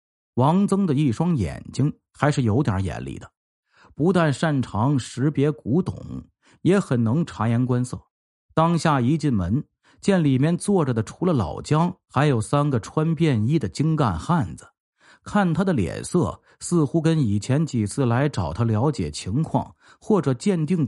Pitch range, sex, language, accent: 110-160 Hz, male, Chinese, native